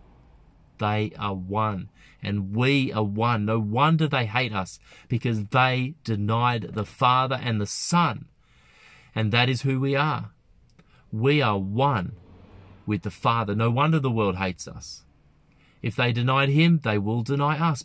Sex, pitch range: male, 105-145 Hz